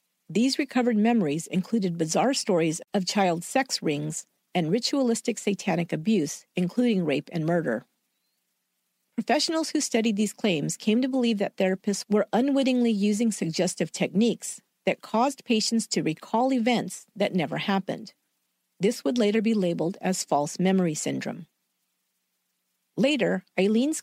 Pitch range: 180-235 Hz